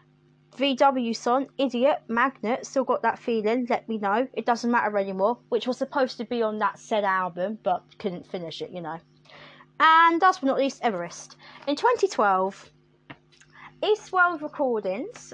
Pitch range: 205-290 Hz